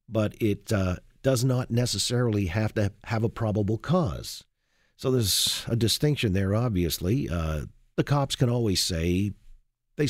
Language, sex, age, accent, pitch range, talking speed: English, male, 50-69, American, 95-125 Hz, 150 wpm